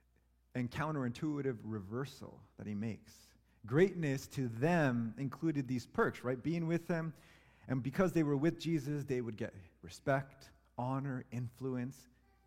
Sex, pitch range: male, 110-155 Hz